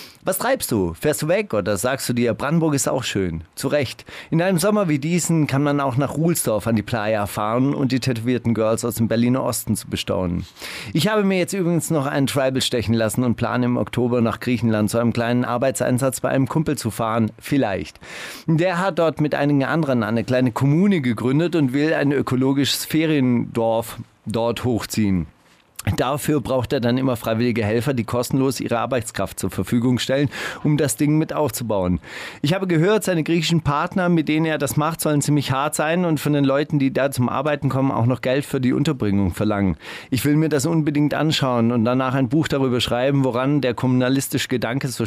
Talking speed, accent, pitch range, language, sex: 200 wpm, German, 120-150 Hz, German, male